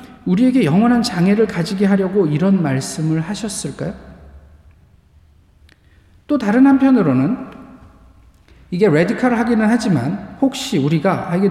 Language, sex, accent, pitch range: Korean, male, native, 135-200 Hz